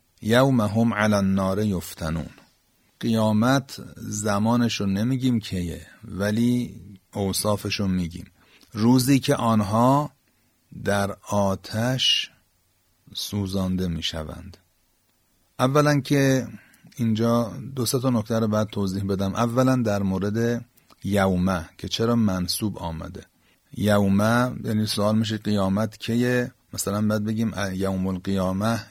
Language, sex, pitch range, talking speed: Persian, male, 95-115 Hz, 100 wpm